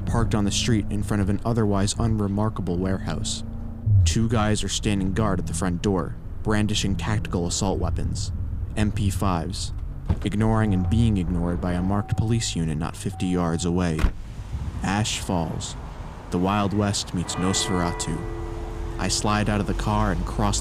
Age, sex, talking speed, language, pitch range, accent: 20-39, male, 155 wpm, English, 90-105 Hz, American